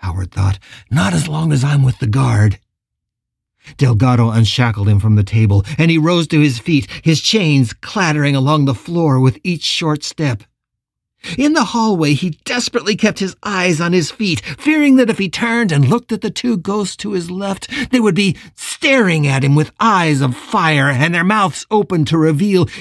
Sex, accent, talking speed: male, American, 190 wpm